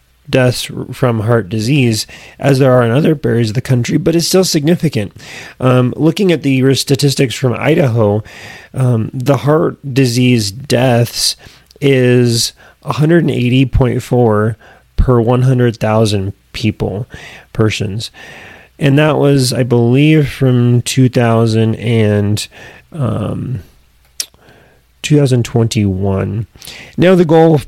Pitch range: 115-140 Hz